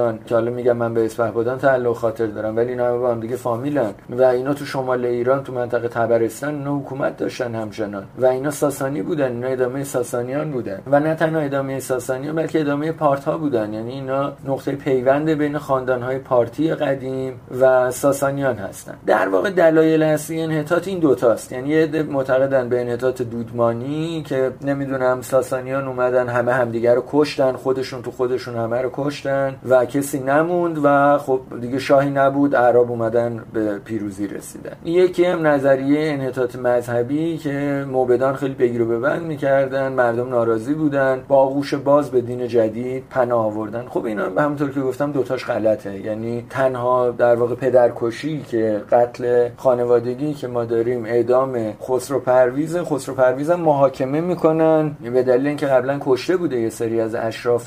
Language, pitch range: English, 120-145 Hz